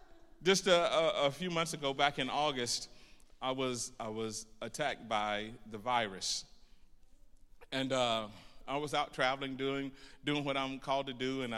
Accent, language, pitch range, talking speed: American, English, 115-135 Hz, 165 wpm